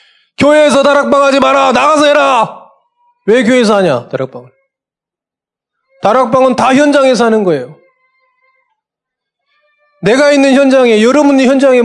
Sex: male